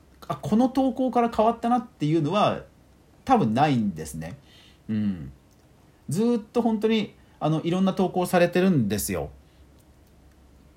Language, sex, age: Japanese, male, 40-59